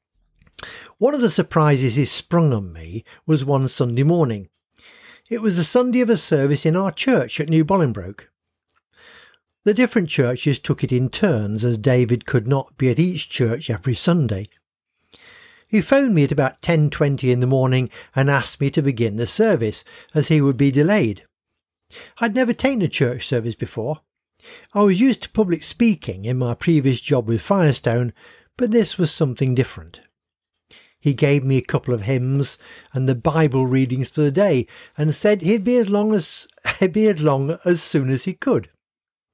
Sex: male